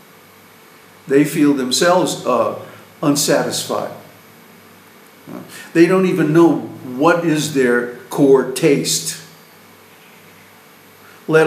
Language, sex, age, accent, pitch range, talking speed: English, male, 50-69, American, 130-170 Hz, 80 wpm